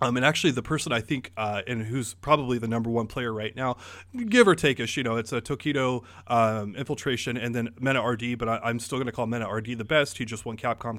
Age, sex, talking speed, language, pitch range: 30-49, male, 250 wpm, English, 115-145 Hz